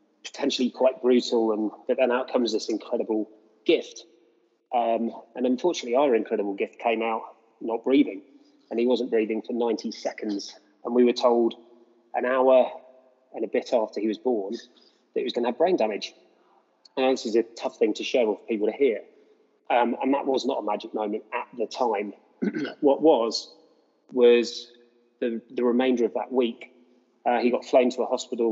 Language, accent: English, British